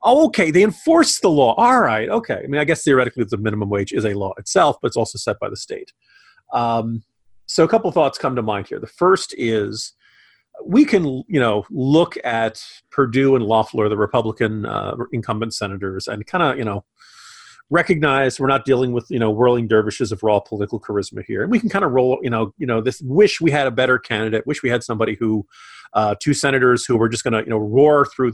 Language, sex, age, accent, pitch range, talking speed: English, male, 40-59, American, 110-160 Hz, 230 wpm